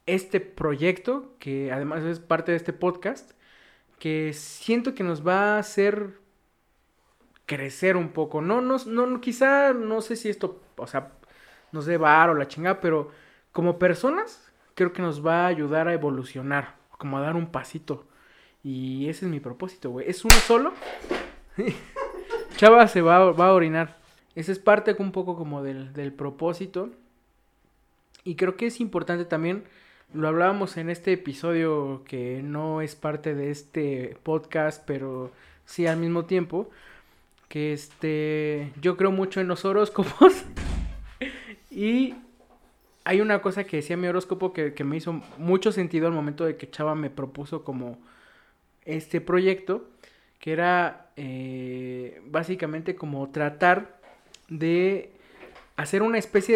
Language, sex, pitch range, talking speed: Spanish, male, 150-195 Hz, 150 wpm